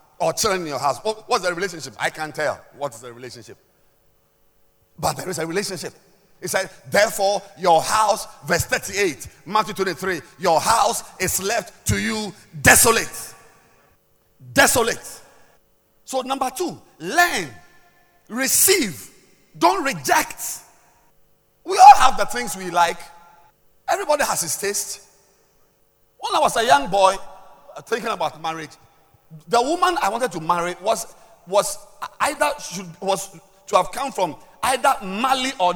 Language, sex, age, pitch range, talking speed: English, male, 50-69, 175-270 Hz, 140 wpm